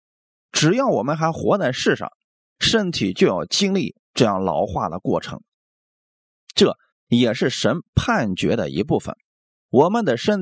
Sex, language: male, Chinese